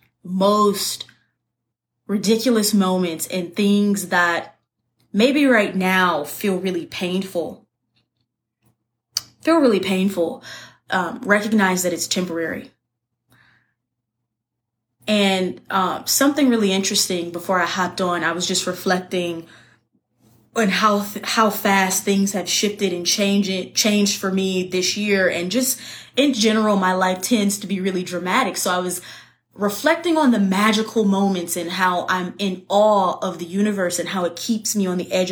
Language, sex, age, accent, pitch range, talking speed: English, female, 20-39, American, 175-215 Hz, 145 wpm